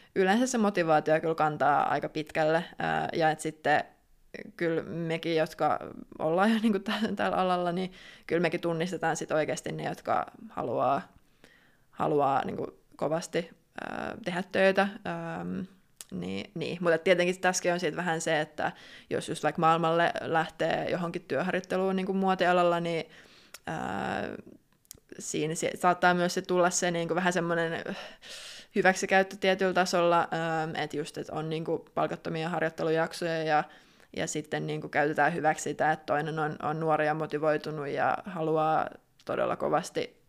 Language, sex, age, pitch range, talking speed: Finnish, female, 20-39, 155-180 Hz, 140 wpm